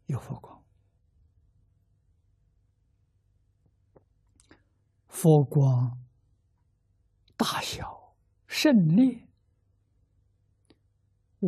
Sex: male